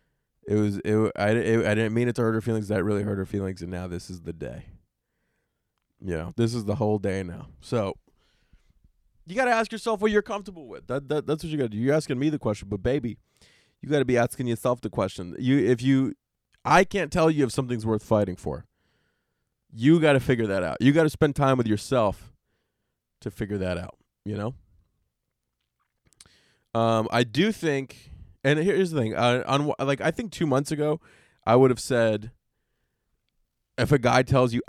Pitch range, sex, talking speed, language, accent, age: 105-140 Hz, male, 210 wpm, English, American, 20-39